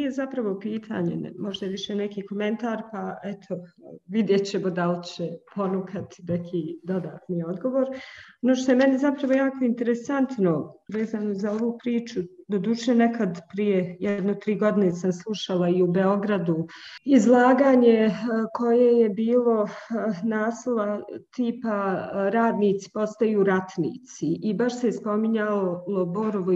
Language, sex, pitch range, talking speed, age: English, female, 185-230 Hz, 130 wpm, 40-59